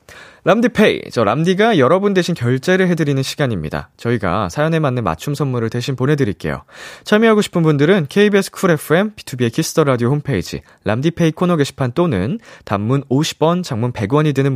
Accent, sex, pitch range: native, male, 120-175 Hz